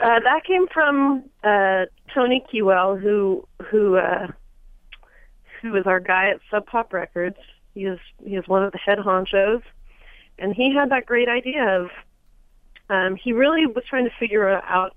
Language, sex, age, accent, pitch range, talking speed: English, female, 30-49, American, 175-200 Hz, 170 wpm